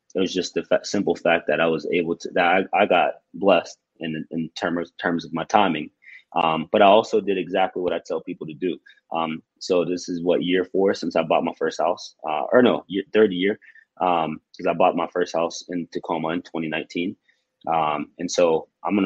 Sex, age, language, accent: male, 20-39, English, American